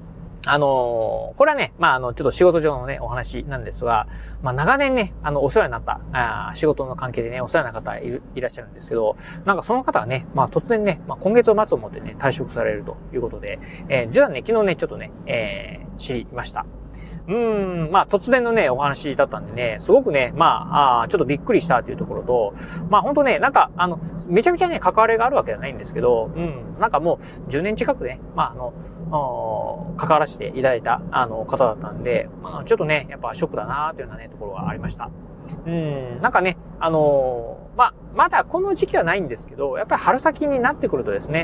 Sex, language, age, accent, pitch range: male, Japanese, 30-49, native, 145-230 Hz